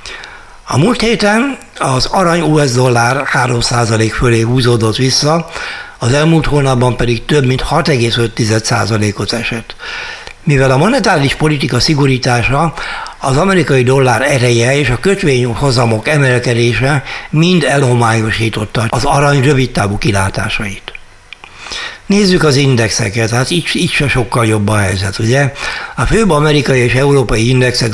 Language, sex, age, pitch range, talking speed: Hungarian, male, 60-79, 120-150 Hz, 120 wpm